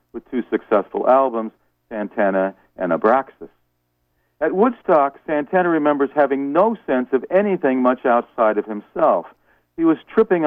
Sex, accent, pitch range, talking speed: male, American, 90-140 Hz, 130 wpm